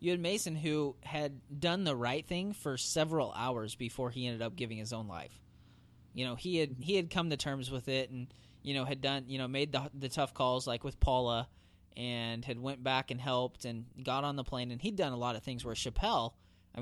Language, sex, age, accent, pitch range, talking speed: English, male, 20-39, American, 110-140 Hz, 240 wpm